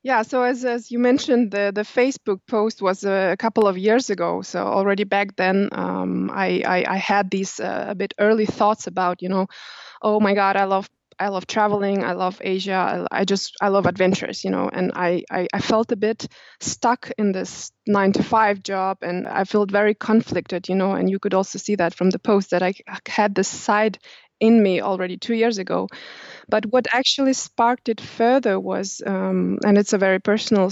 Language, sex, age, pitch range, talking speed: English, female, 20-39, 190-225 Hz, 215 wpm